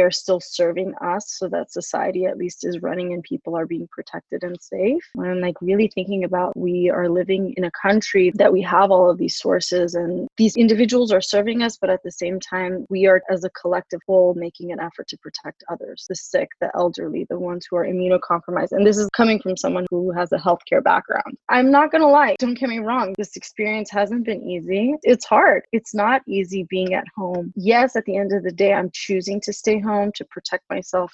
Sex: female